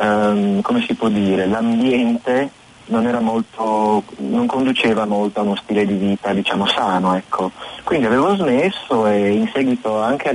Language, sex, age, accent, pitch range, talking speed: Italian, male, 30-49, native, 105-135 Hz, 155 wpm